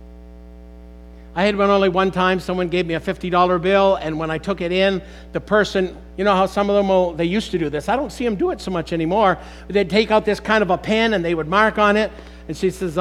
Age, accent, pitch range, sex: 60-79, American, 160-225 Hz, male